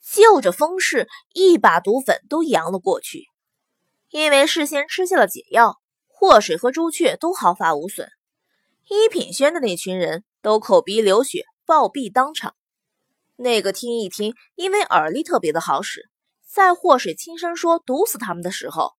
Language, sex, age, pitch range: Chinese, female, 20-39, 240-360 Hz